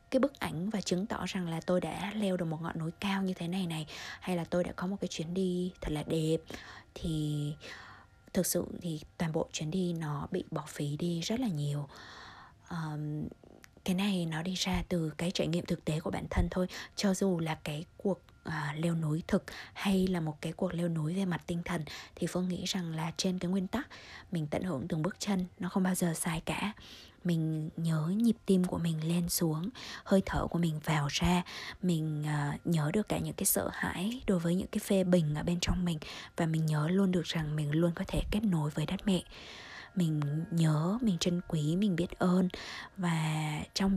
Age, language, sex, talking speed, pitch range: 20-39, Vietnamese, female, 220 wpm, 160-195 Hz